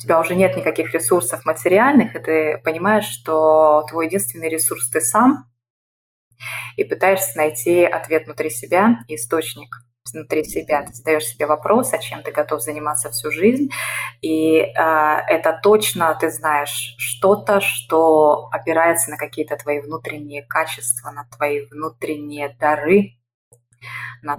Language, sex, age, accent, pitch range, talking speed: Russian, female, 20-39, native, 145-185 Hz, 135 wpm